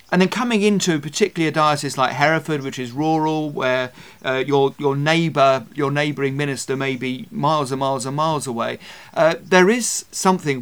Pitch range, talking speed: 135-160 Hz, 180 wpm